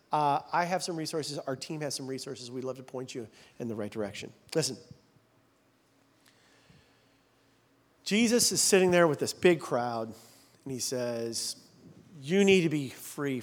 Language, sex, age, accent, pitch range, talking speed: English, male, 40-59, American, 130-175 Hz, 160 wpm